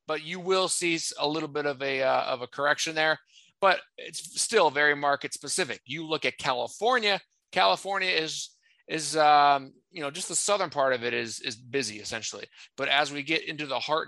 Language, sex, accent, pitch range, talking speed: English, male, American, 135-170 Hz, 200 wpm